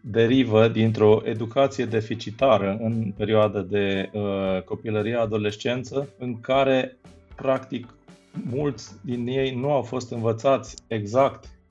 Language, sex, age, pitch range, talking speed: Romanian, male, 30-49, 110-135 Hz, 110 wpm